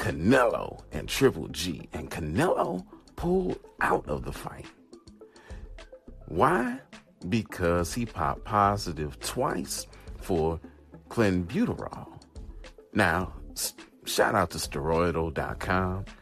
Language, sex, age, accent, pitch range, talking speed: English, male, 40-59, American, 70-95 Hz, 90 wpm